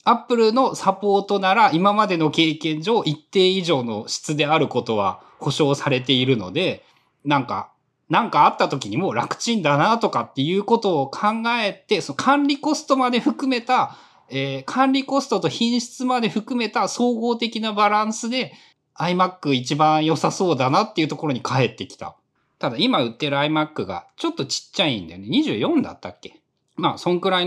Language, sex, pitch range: Japanese, male, 140-235 Hz